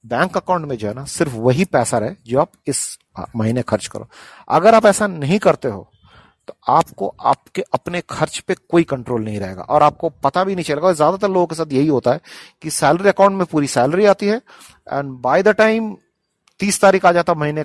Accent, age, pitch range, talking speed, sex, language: native, 40-59, 135-180 Hz, 205 wpm, male, Hindi